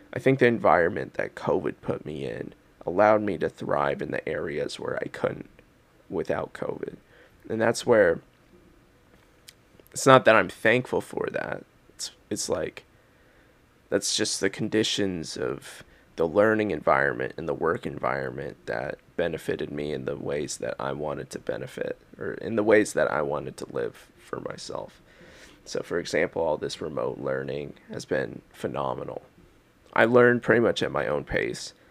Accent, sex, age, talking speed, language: American, male, 20-39, 160 wpm, English